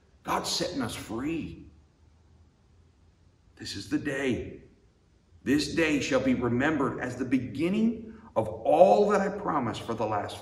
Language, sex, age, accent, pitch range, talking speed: English, male, 50-69, American, 85-120 Hz, 140 wpm